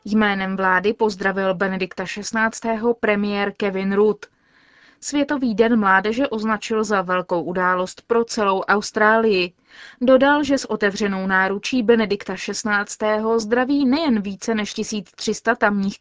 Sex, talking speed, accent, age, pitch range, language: female, 115 wpm, native, 20-39, 200-245 Hz, Czech